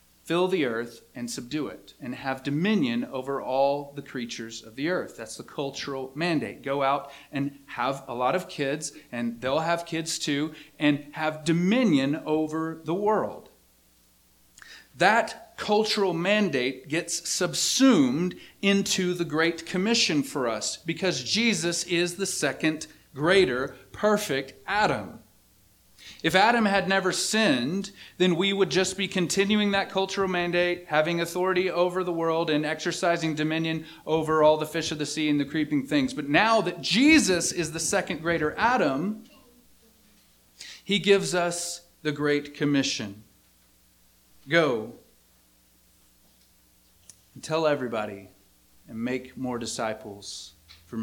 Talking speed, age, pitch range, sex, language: 135 wpm, 40-59, 125-180 Hz, male, English